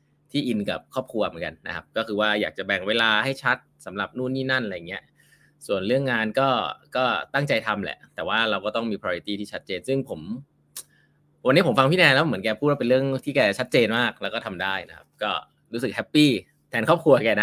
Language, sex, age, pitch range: Thai, male, 20-39, 110-145 Hz